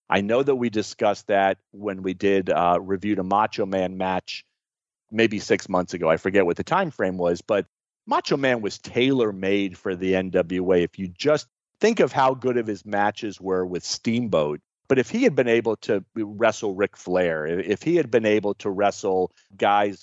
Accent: American